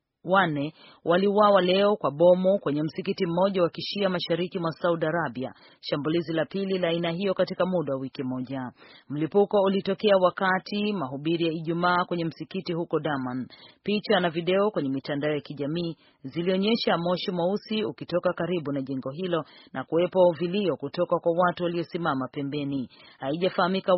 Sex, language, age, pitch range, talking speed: female, Swahili, 40-59, 150-190 Hz, 150 wpm